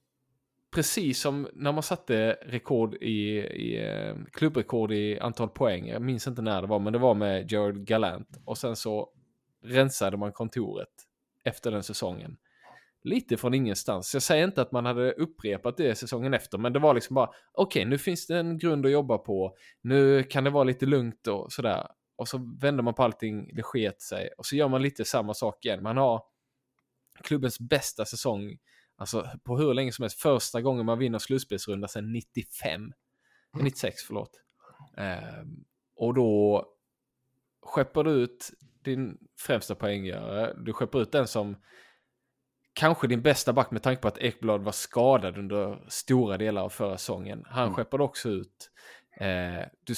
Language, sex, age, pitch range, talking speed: Swedish, male, 20-39, 105-135 Hz, 170 wpm